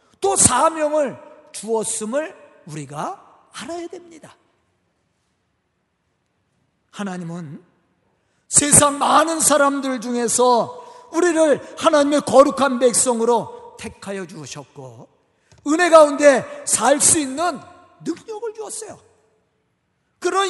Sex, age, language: male, 40-59, Korean